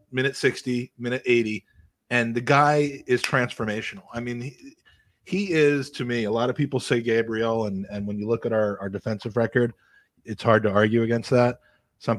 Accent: American